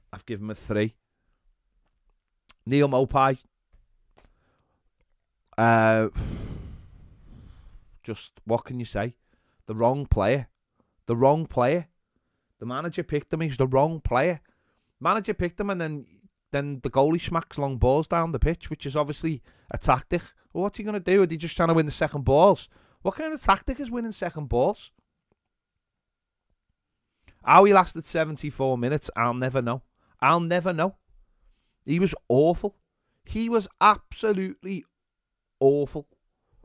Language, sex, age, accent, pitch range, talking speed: English, male, 30-49, British, 115-165 Hz, 140 wpm